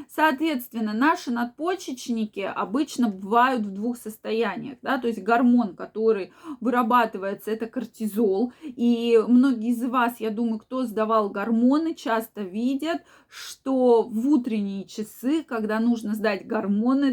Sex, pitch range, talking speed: female, 220-270 Hz, 125 wpm